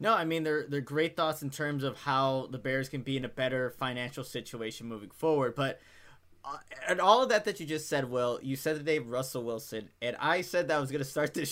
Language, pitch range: English, 130-155 Hz